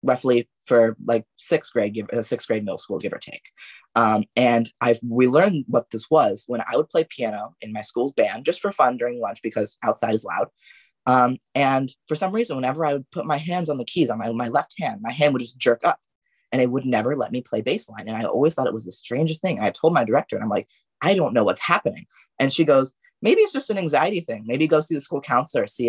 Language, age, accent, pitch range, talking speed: English, 20-39, American, 125-170 Hz, 255 wpm